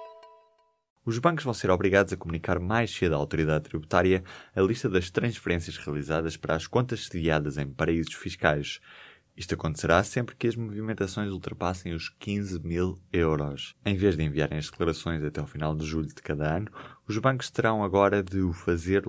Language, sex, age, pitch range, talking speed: Portuguese, male, 20-39, 80-110 Hz, 175 wpm